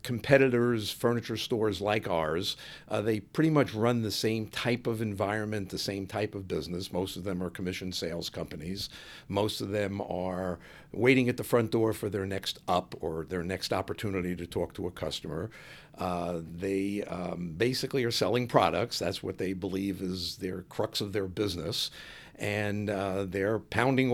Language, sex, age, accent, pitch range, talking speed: English, male, 60-79, American, 95-120 Hz, 175 wpm